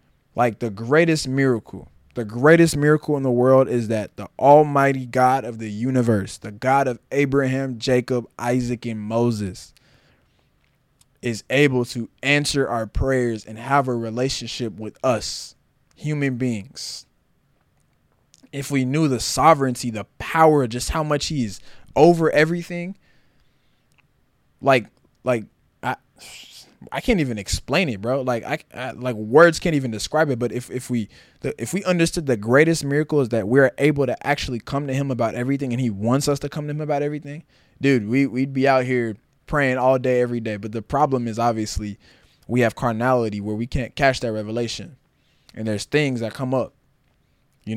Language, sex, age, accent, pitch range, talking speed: English, male, 20-39, American, 115-140 Hz, 170 wpm